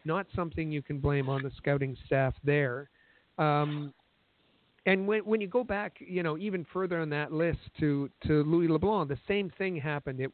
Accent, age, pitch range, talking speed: American, 50-69, 135-155 Hz, 190 wpm